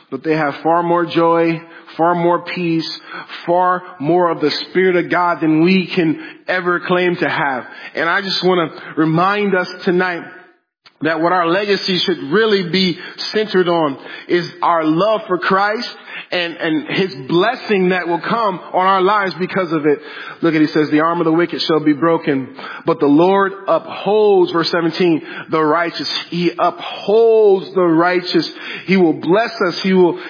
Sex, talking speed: male, 175 wpm